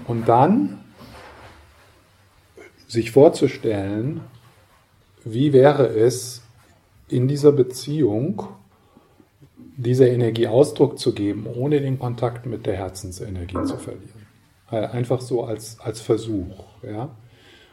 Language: German